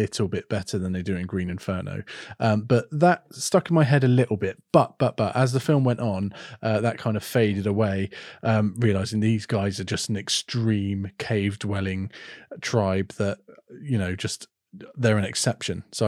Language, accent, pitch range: English, British, 105-125 Hz